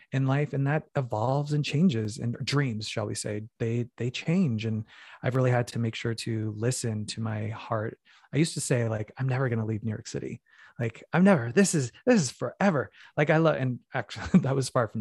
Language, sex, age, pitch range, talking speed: English, male, 20-39, 115-145 Hz, 225 wpm